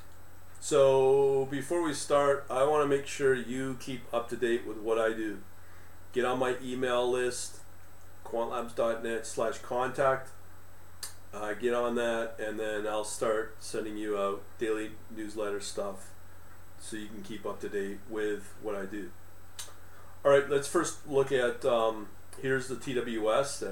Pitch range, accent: 95-120 Hz, American